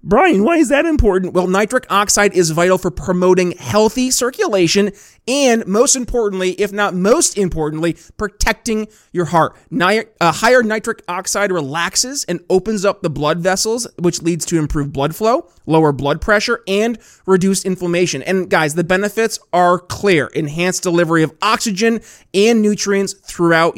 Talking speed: 150 wpm